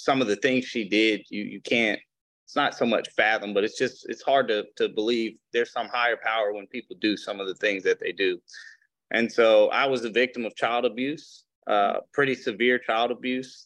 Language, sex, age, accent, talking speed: English, male, 30-49, American, 220 wpm